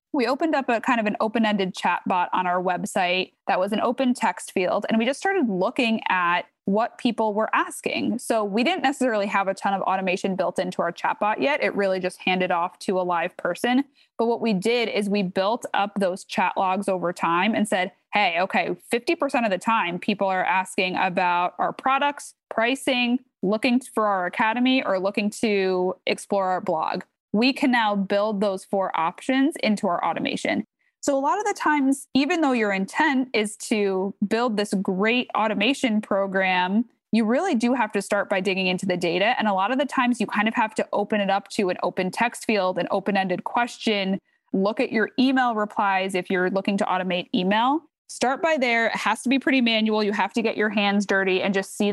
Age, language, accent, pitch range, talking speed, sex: 20-39, English, American, 190-245 Hz, 210 wpm, female